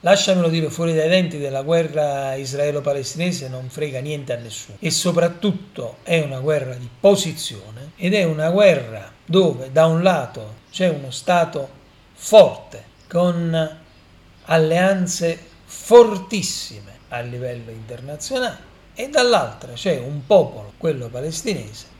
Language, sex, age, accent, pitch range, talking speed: Italian, male, 40-59, native, 125-185 Hz, 125 wpm